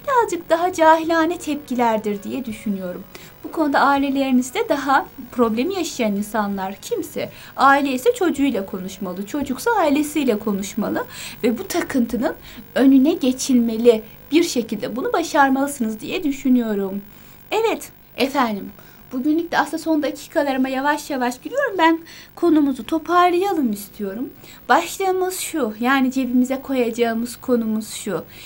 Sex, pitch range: female, 235-310 Hz